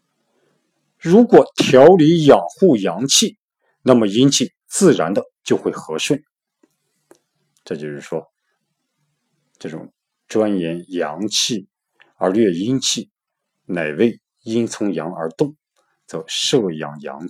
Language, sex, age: Chinese, male, 50-69